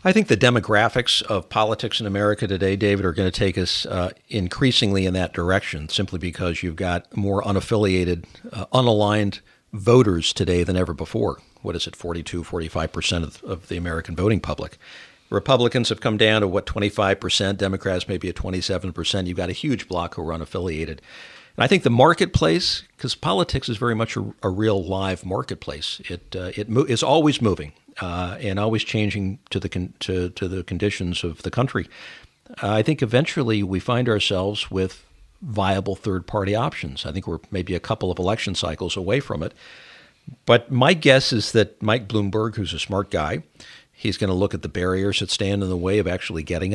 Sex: male